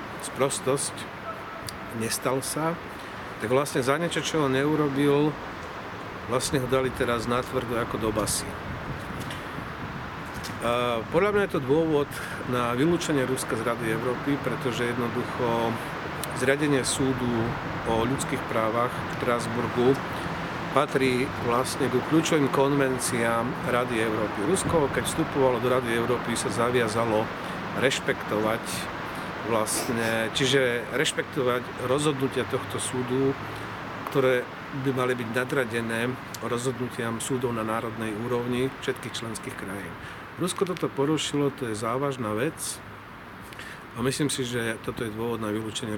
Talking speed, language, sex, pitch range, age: 115 wpm, Slovak, male, 115-135 Hz, 50-69